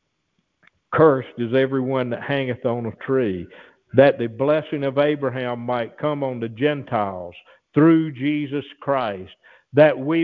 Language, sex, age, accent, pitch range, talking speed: English, male, 50-69, American, 135-195 Hz, 135 wpm